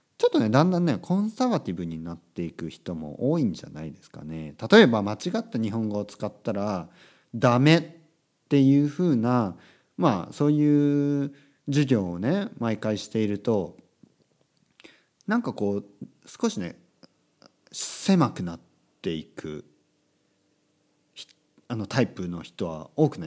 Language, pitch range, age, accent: Japanese, 100-150 Hz, 40-59, native